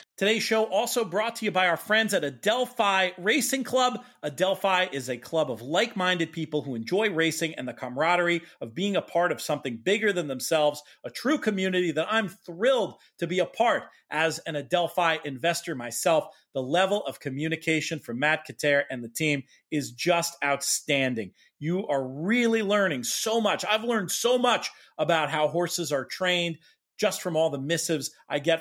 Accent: American